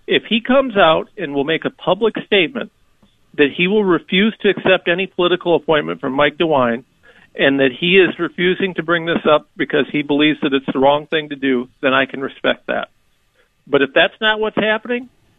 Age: 50-69